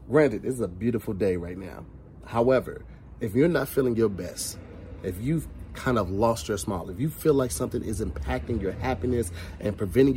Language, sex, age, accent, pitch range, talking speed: English, male, 30-49, American, 95-130 Hz, 195 wpm